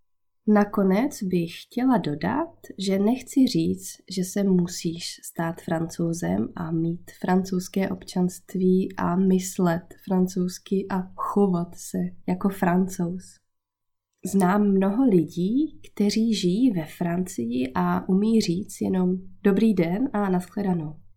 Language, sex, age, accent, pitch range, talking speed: Czech, female, 20-39, native, 170-215 Hz, 110 wpm